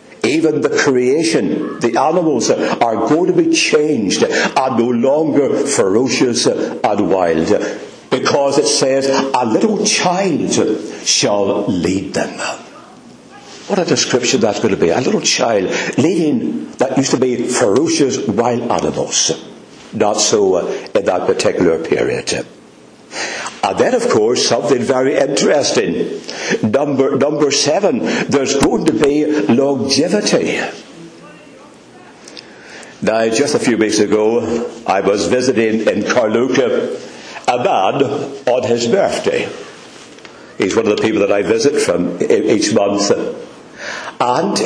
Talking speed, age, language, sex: 125 wpm, 60-79, English, male